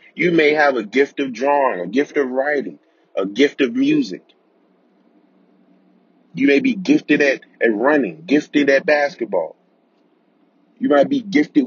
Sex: male